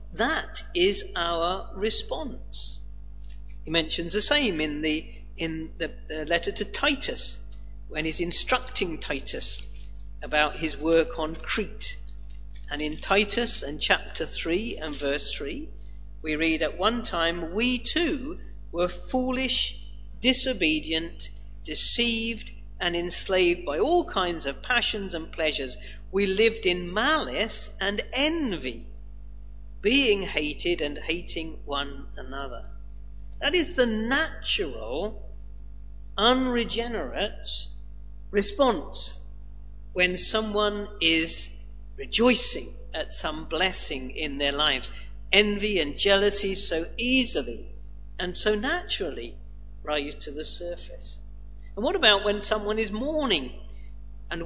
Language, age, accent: English, 50-69, British